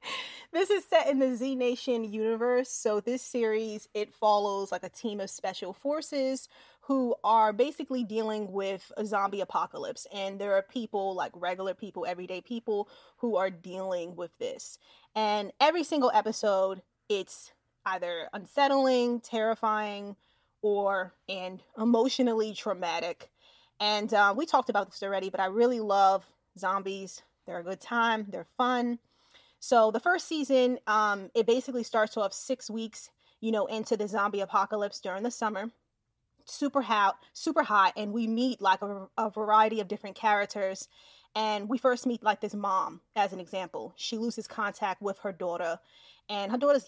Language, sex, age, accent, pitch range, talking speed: English, female, 20-39, American, 195-245 Hz, 160 wpm